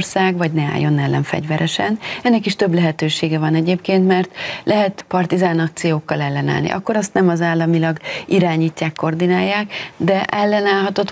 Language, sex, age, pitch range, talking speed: Hungarian, female, 30-49, 165-190 Hz, 130 wpm